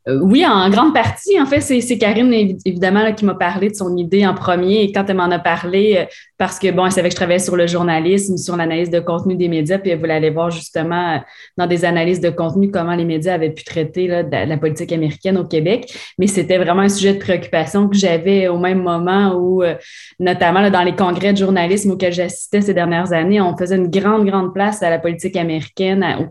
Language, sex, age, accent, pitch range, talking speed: French, female, 20-39, Canadian, 170-195 Hz, 235 wpm